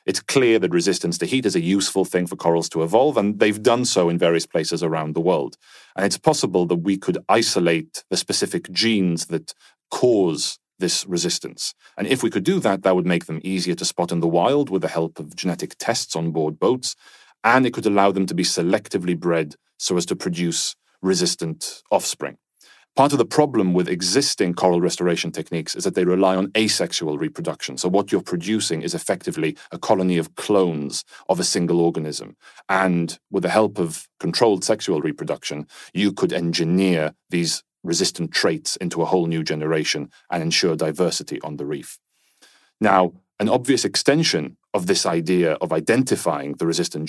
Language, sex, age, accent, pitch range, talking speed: English, male, 30-49, British, 85-105 Hz, 185 wpm